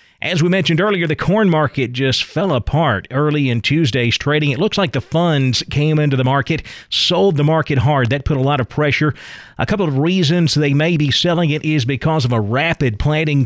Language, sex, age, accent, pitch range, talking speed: English, male, 40-59, American, 125-160 Hz, 215 wpm